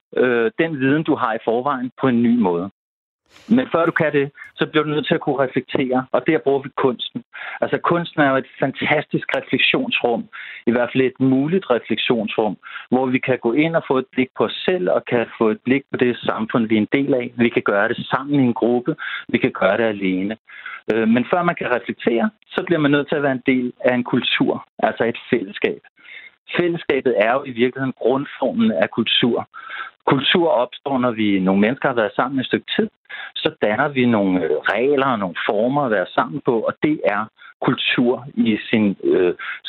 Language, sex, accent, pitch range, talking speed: Danish, male, native, 115-150 Hz, 210 wpm